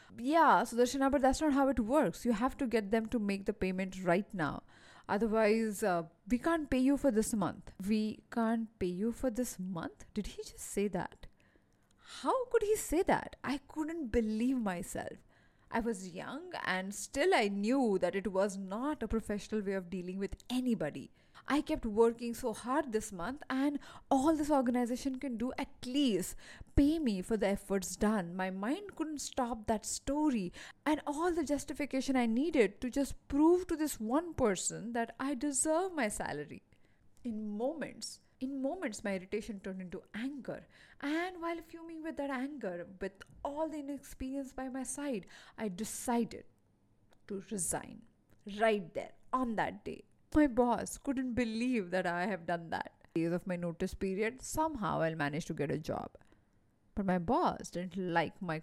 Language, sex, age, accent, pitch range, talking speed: English, female, 20-39, Indian, 190-275 Hz, 175 wpm